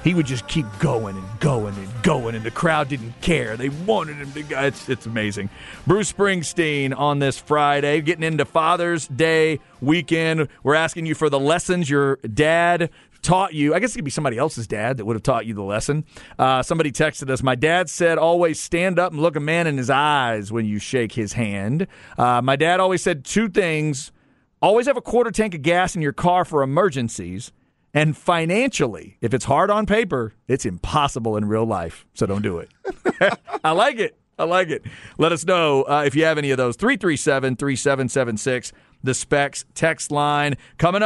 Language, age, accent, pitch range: English, 40-59, American, 130-170 Hz